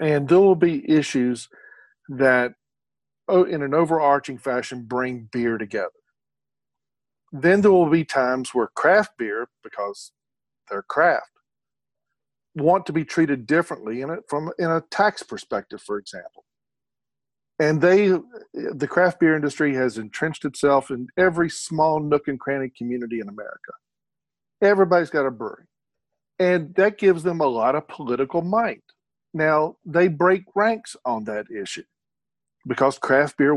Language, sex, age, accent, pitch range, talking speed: English, male, 50-69, American, 135-185 Hz, 140 wpm